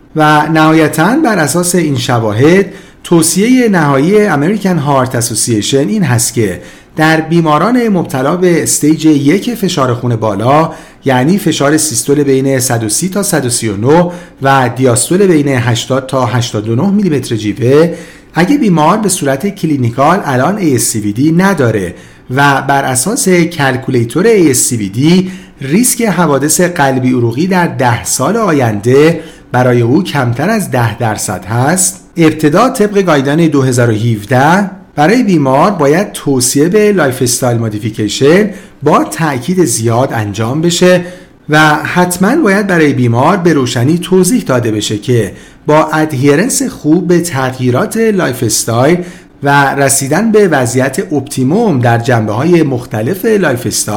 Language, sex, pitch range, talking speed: Persian, male, 125-175 Hz, 120 wpm